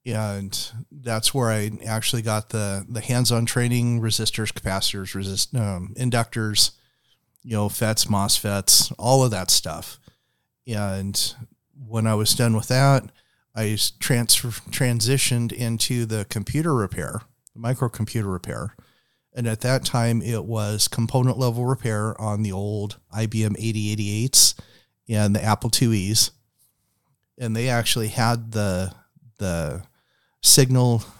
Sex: male